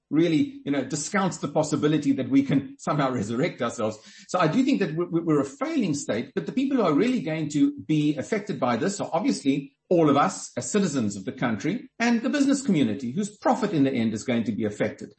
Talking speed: 225 wpm